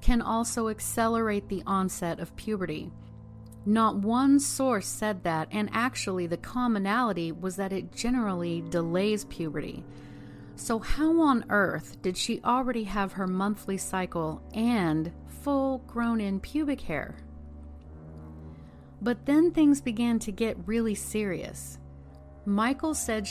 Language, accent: English, American